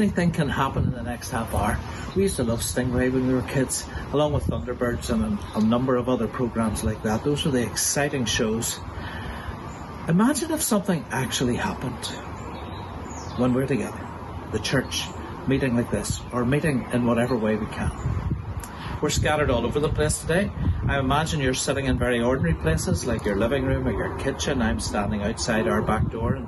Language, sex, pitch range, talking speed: English, male, 105-150 Hz, 185 wpm